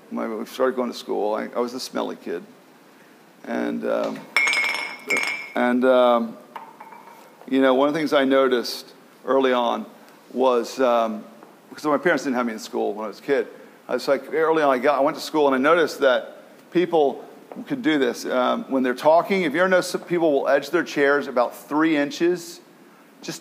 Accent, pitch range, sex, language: American, 125-205 Hz, male, English